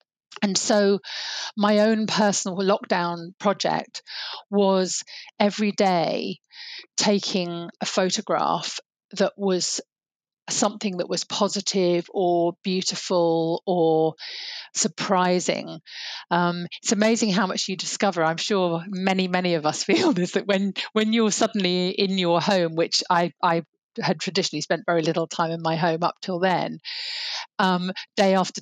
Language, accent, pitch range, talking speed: English, British, 175-205 Hz, 135 wpm